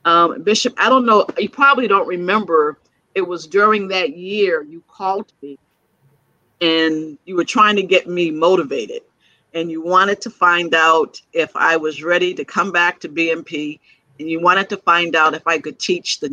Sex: female